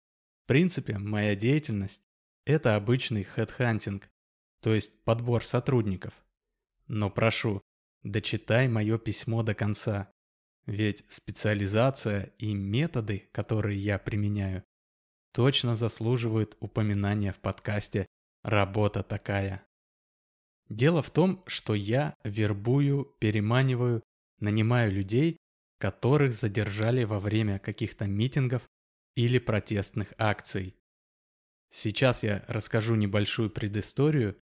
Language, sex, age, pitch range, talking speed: Russian, male, 20-39, 105-125 Hz, 95 wpm